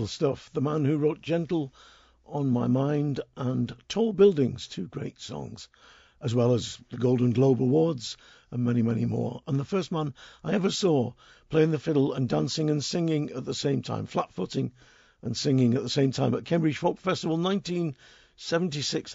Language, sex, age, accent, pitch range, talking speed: English, male, 50-69, British, 120-155 Hz, 180 wpm